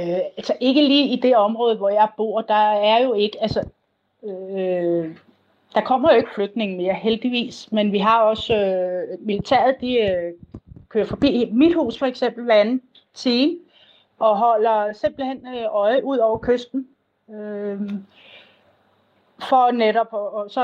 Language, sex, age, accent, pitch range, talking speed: Danish, female, 30-49, native, 205-265 Hz, 155 wpm